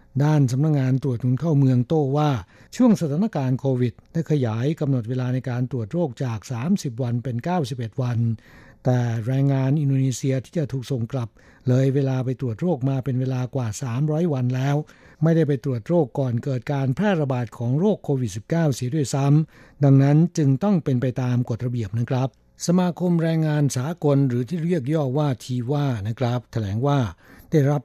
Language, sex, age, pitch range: Thai, male, 60-79, 125-150 Hz